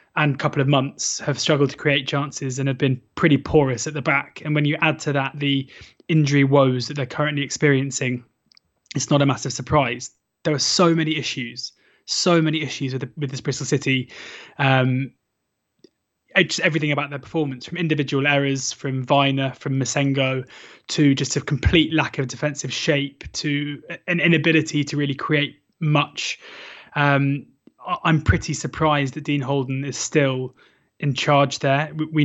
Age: 20-39